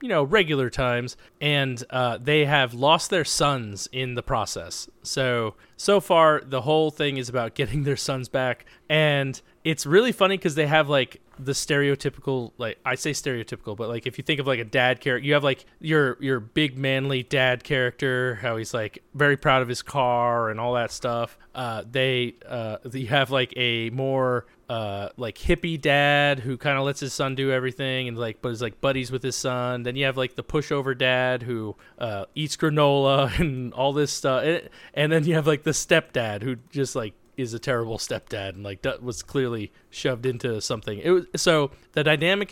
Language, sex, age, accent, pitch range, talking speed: English, male, 30-49, American, 125-150 Hz, 200 wpm